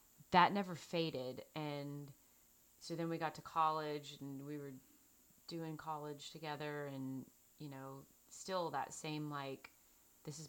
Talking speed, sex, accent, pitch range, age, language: 145 wpm, female, American, 140-155 Hz, 30-49, English